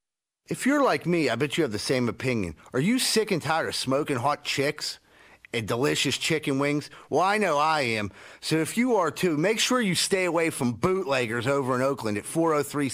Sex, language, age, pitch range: male, English, 40-59, 160-260 Hz